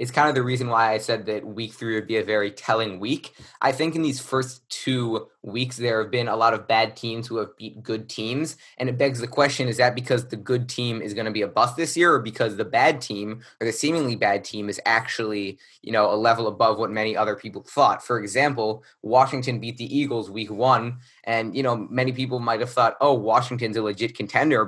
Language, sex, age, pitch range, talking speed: English, male, 20-39, 110-125 Hz, 240 wpm